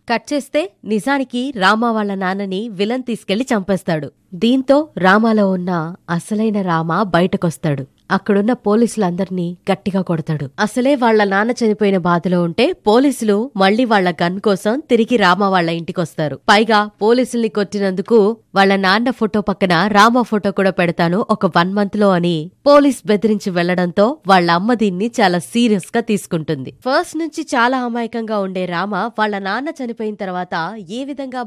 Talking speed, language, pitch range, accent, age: 135 wpm, Telugu, 180-225 Hz, native, 20-39